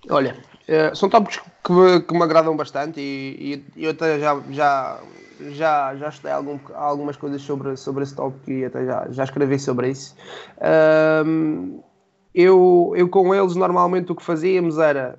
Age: 20-39